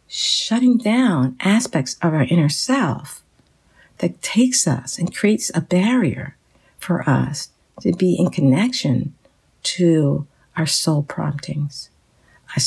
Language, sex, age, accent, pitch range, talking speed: English, female, 50-69, American, 140-180 Hz, 120 wpm